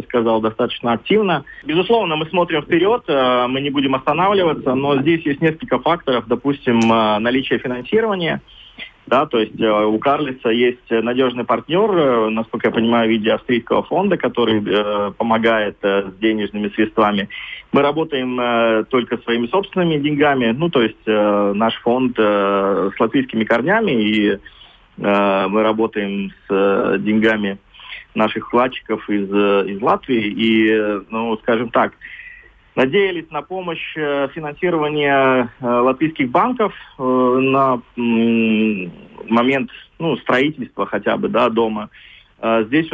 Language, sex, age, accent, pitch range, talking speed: Russian, male, 20-39, native, 110-140 Hz, 115 wpm